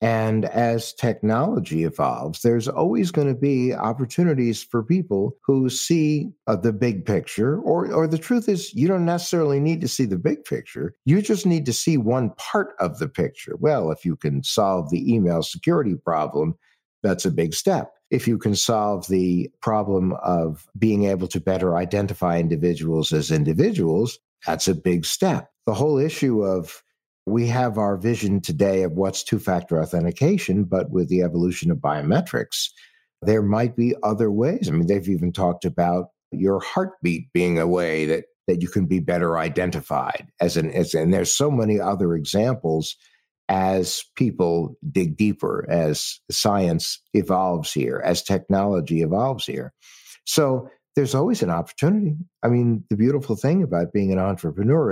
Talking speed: 165 wpm